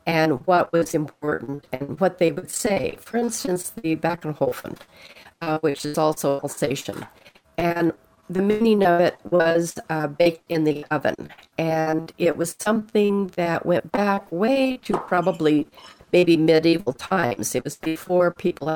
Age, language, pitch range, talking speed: 50-69, English, 155-180 Hz, 145 wpm